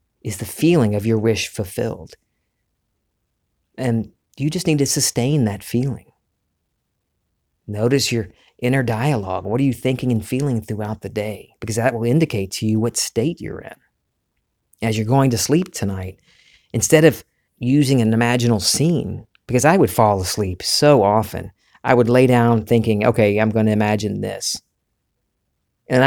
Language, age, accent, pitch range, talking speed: English, 40-59, American, 105-130 Hz, 155 wpm